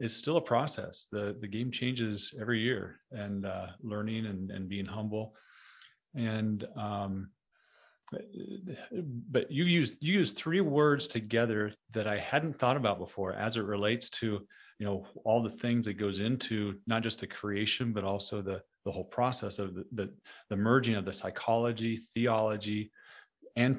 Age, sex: 30-49, male